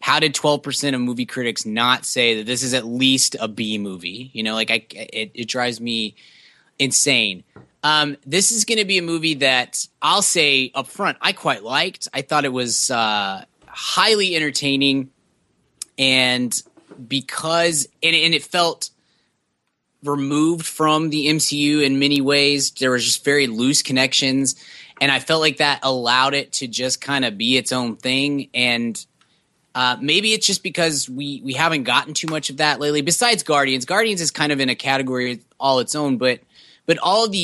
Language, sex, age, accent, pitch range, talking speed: English, male, 20-39, American, 125-150 Hz, 180 wpm